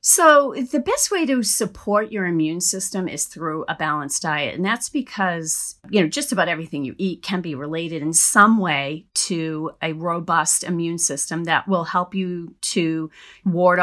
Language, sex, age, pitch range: English, female, 40-59, 175-250 Hz